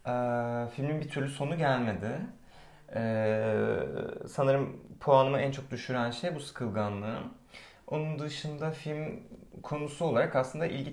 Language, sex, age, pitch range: Turkish, male, 30-49, 105-135 Hz